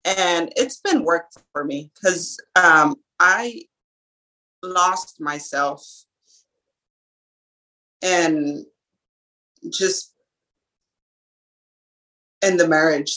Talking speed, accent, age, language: 75 wpm, American, 30-49, English